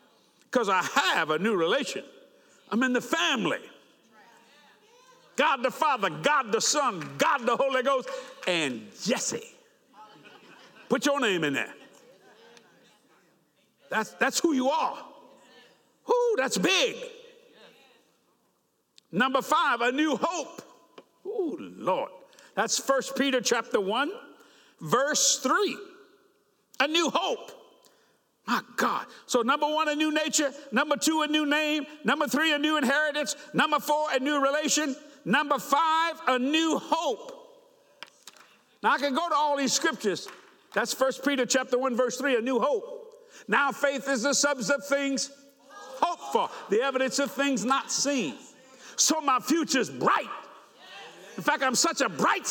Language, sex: English, male